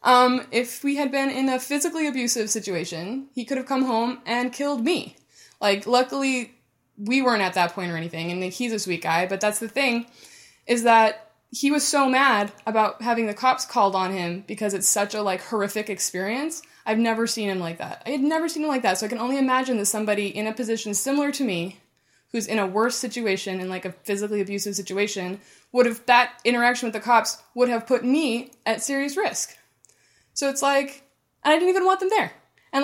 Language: English